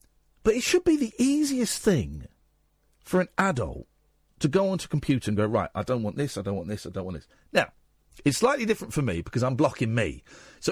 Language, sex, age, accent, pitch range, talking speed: English, male, 50-69, British, 100-160 Hz, 230 wpm